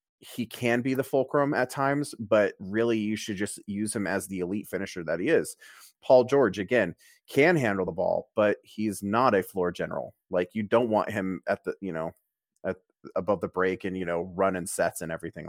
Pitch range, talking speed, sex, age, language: 100-125 Hz, 215 wpm, male, 30-49, English